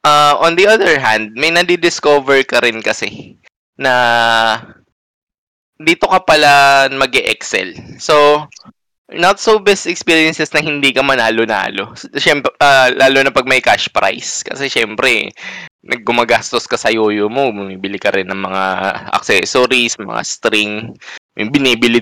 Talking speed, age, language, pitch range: 140 wpm, 20-39, Filipino, 110-140 Hz